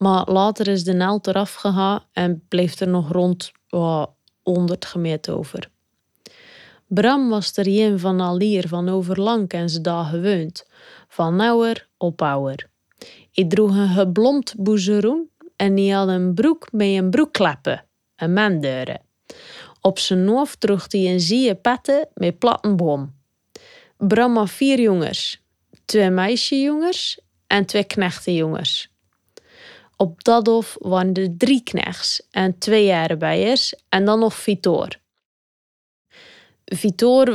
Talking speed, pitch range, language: 135 wpm, 185-220 Hz, Dutch